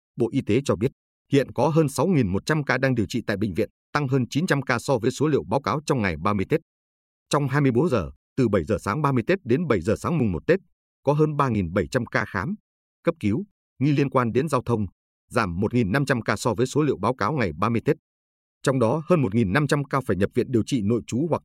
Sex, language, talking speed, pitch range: male, Vietnamese, 235 wpm, 95-140 Hz